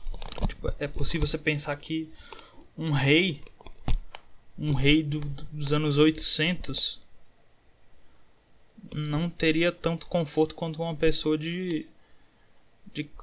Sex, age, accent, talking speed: male, 20-39, Brazilian, 95 wpm